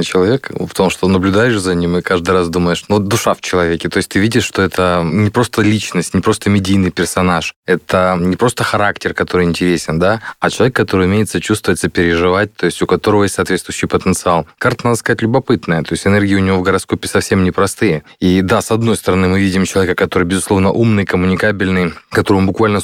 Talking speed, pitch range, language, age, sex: 195 wpm, 90-105 Hz, Russian, 20-39, male